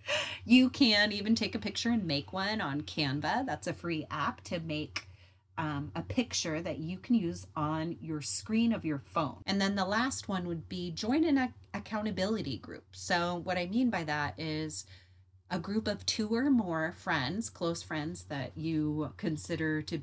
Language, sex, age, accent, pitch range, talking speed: English, female, 30-49, American, 145-205 Hz, 185 wpm